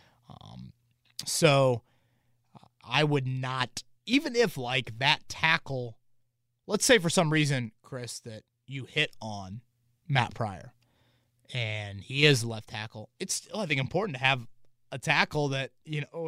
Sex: male